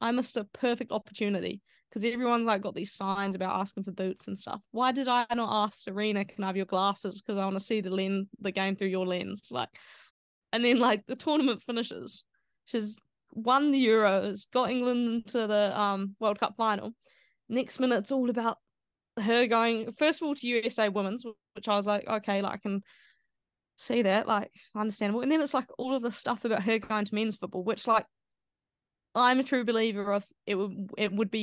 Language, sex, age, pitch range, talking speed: English, female, 20-39, 200-235 Hz, 210 wpm